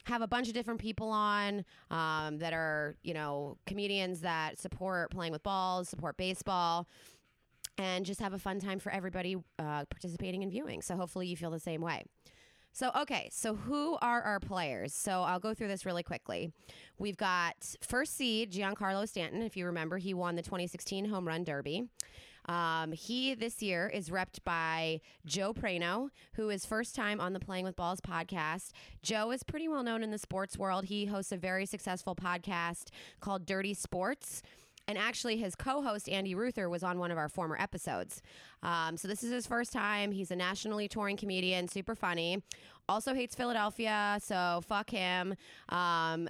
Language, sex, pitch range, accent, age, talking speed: English, female, 175-210 Hz, American, 20-39, 180 wpm